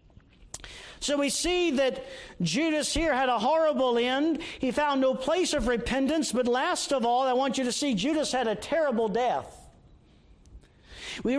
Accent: American